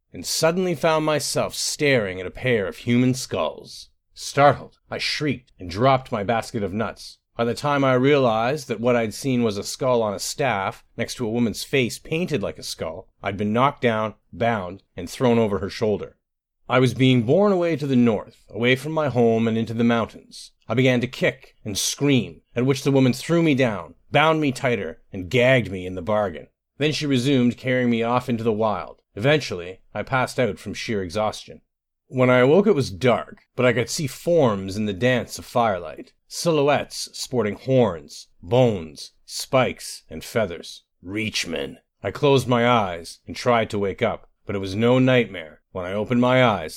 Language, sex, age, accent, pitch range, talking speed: English, male, 40-59, American, 105-130 Hz, 195 wpm